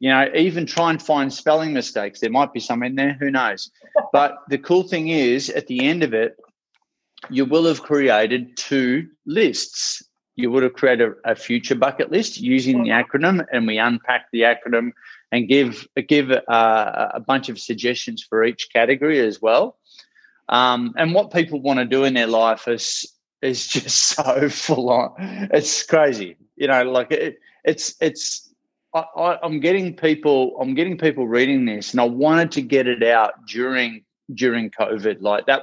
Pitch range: 120-160 Hz